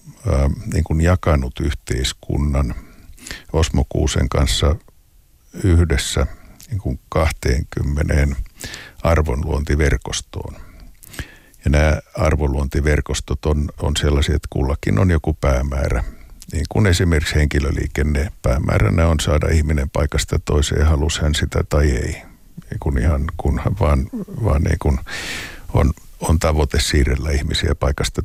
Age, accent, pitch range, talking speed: 60-79, native, 70-80 Hz, 100 wpm